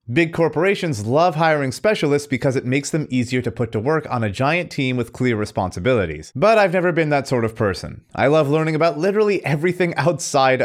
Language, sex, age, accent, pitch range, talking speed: English, male, 30-49, American, 105-145 Hz, 205 wpm